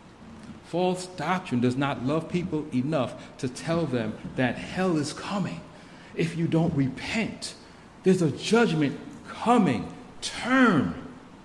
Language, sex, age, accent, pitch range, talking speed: English, male, 60-79, American, 125-175 Hz, 120 wpm